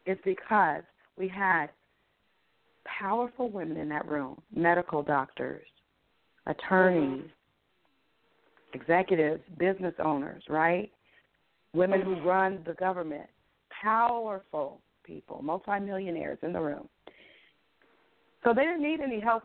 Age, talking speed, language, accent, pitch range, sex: 40-59, 100 wpm, English, American, 160-195 Hz, female